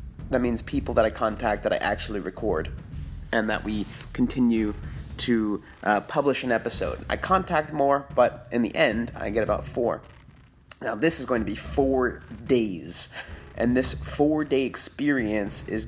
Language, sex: English, male